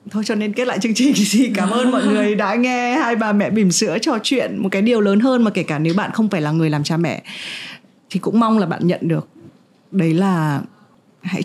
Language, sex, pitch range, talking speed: Vietnamese, female, 170-215 Hz, 250 wpm